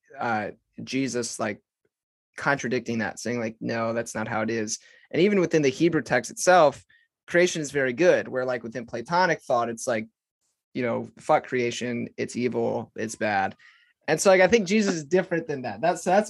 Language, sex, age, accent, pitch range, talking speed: English, male, 20-39, American, 130-165 Hz, 190 wpm